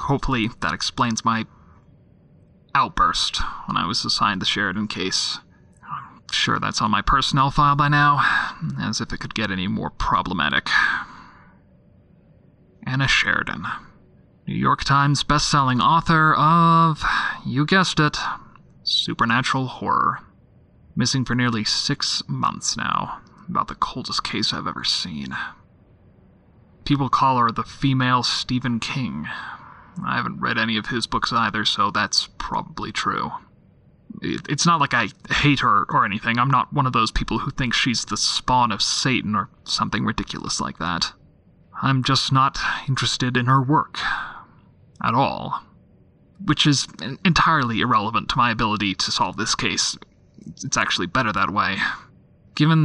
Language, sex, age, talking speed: English, male, 30-49, 145 wpm